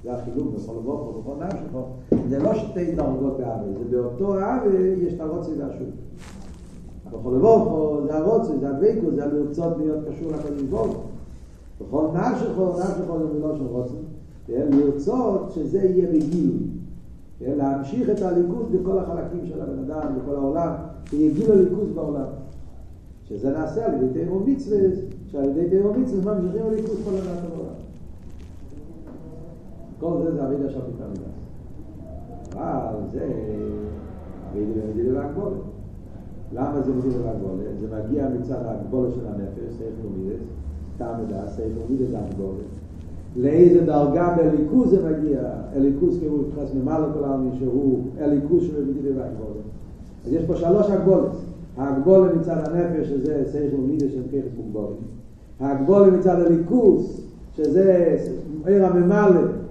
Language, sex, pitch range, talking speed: Hebrew, male, 110-170 Hz, 115 wpm